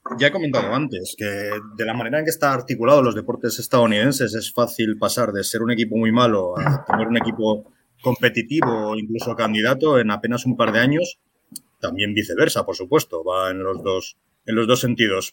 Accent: Spanish